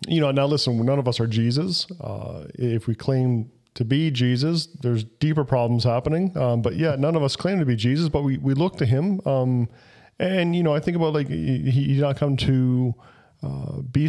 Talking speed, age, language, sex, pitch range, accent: 220 wpm, 40-59, English, male, 115-145 Hz, American